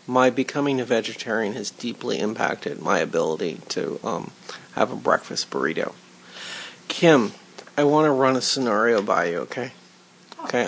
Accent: American